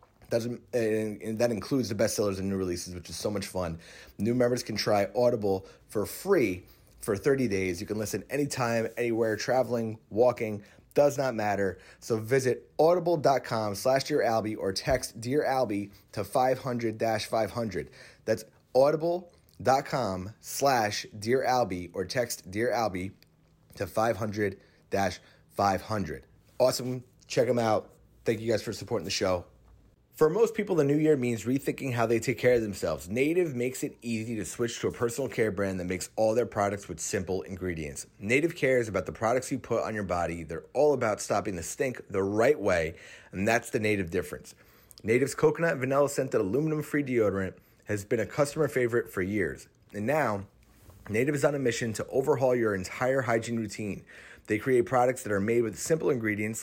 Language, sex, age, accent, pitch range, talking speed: English, male, 30-49, American, 100-130 Hz, 170 wpm